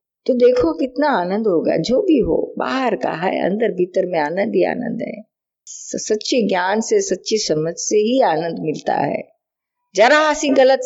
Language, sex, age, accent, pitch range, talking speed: Hindi, female, 50-69, native, 195-305 Hz, 170 wpm